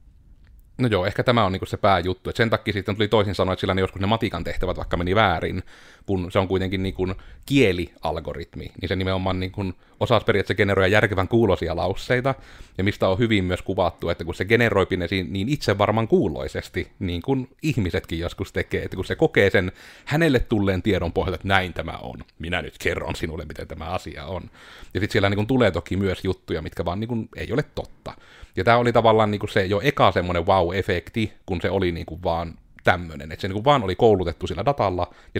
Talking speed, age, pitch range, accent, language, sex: 205 wpm, 30-49, 90-110 Hz, native, Finnish, male